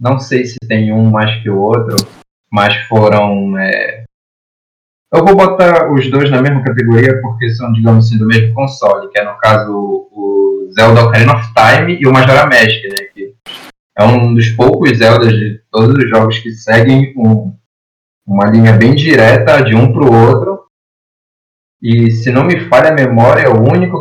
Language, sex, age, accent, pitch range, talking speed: Portuguese, male, 20-39, Brazilian, 110-135 Hz, 180 wpm